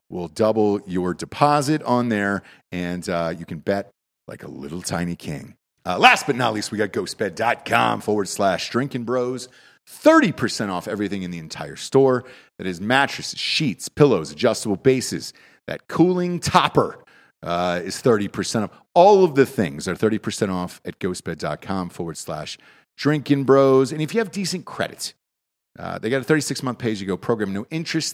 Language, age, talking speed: English, 40-59, 170 wpm